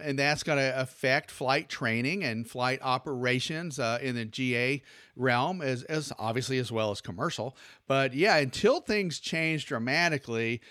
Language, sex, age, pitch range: English, male, 40-59, 125-155 Hz